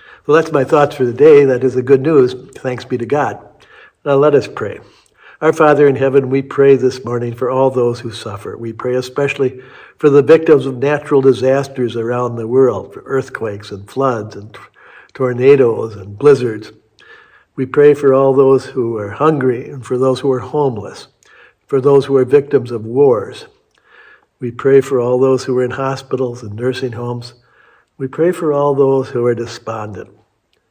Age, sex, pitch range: 60-79, male, 125-145 Hz